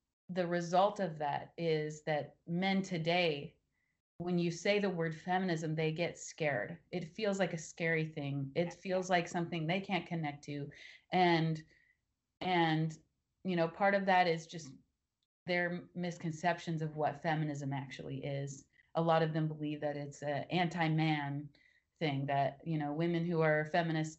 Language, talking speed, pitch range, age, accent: English, 160 wpm, 155-195 Hz, 30-49, American